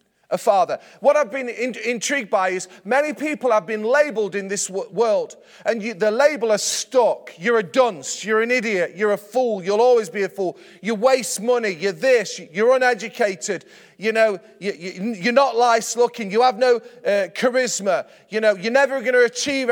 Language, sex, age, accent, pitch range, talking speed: English, male, 30-49, British, 215-265 Hz, 185 wpm